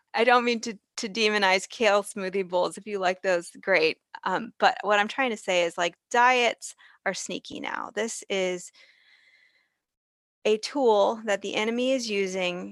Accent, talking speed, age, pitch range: American, 170 wpm, 20-39, 180-225 Hz